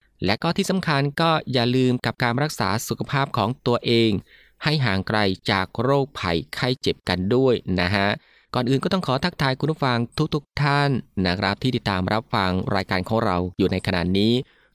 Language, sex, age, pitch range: Thai, male, 20-39, 100-130 Hz